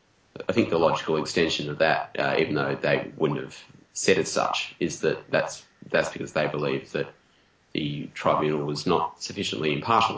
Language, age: English, 30-49